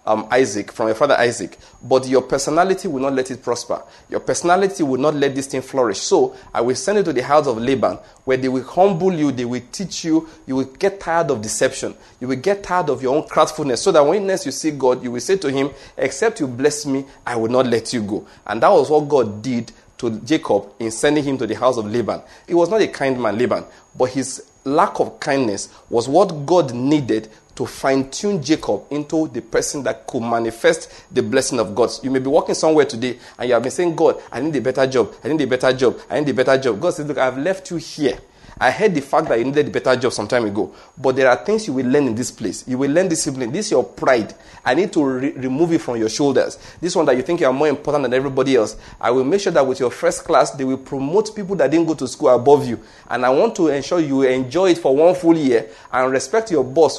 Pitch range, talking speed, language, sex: 125-165 Hz, 260 wpm, English, male